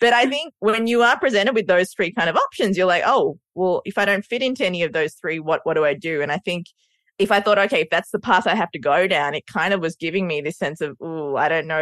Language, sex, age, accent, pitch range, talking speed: English, female, 20-39, Australian, 150-195 Hz, 305 wpm